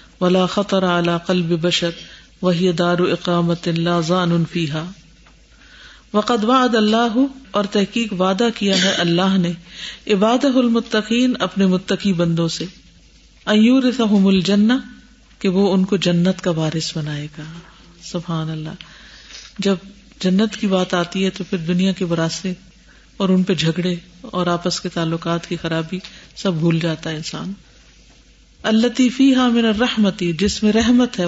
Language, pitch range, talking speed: Urdu, 170-200 Hz, 125 wpm